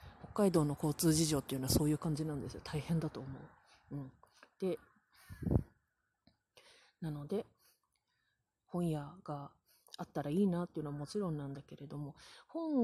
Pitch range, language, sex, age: 150-220 Hz, Japanese, female, 30-49